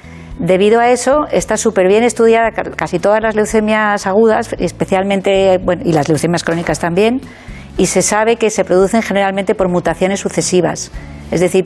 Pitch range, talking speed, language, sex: 175-205 Hz, 155 wpm, Spanish, female